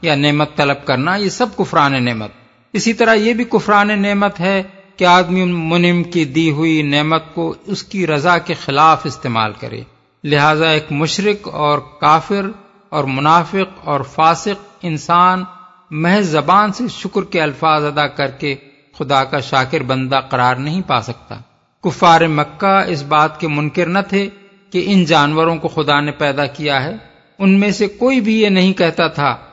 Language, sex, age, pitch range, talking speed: Urdu, male, 50-69, 145-185 Hz, 170 wpm